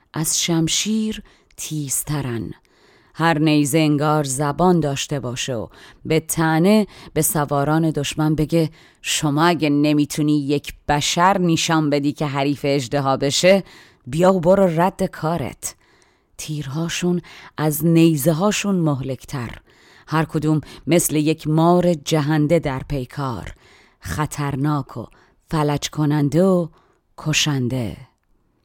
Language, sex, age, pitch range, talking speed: Persian, female, 30-49, 140-170 Hz, 105 wpm